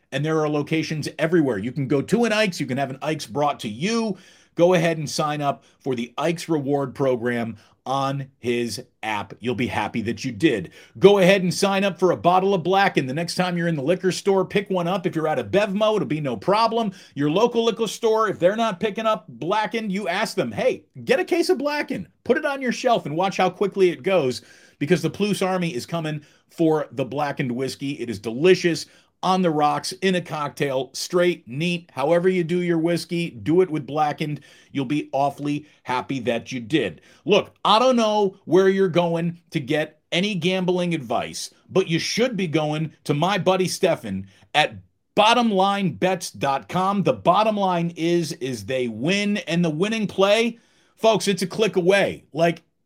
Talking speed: 200 wpm